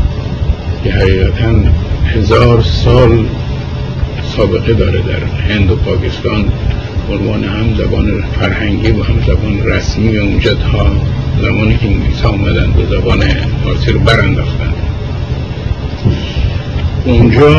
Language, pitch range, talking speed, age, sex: Persian, 95-115 Hz, 100 wpm, 70-89, male